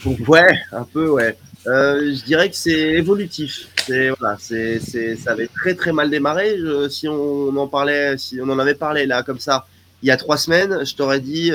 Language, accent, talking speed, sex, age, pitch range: French, French, 215 wpm, male, 20-39, 110-140 Hz